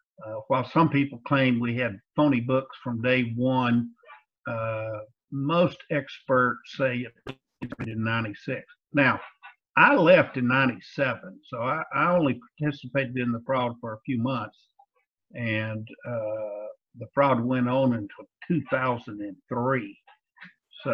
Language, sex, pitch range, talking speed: English, male, 115-135 Hz, 130 wpm